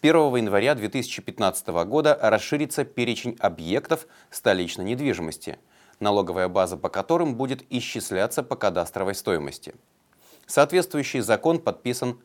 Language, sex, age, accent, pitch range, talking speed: Russian, male, 30-49, native, 100-140 Hz, 105 wpm